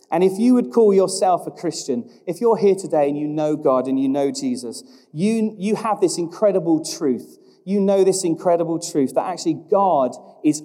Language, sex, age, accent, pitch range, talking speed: English, male, 40-59, British, 140-175 Hz, 195 wpm